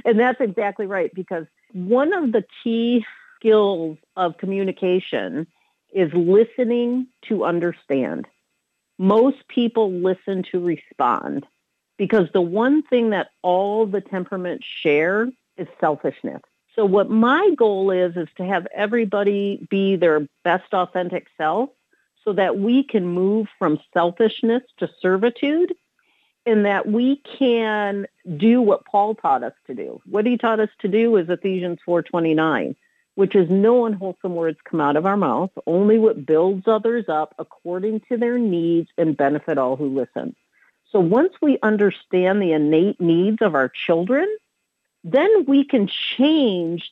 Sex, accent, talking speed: female, American, 145 wpm